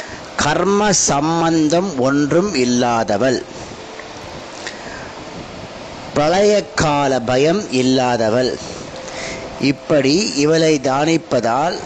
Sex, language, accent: male, Tamil, native